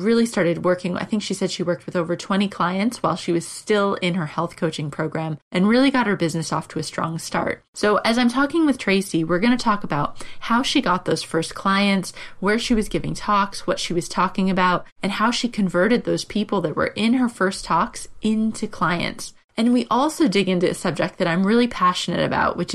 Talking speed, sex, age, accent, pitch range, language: 225 wpm, female, 20-39, American, 175-215 Hz, English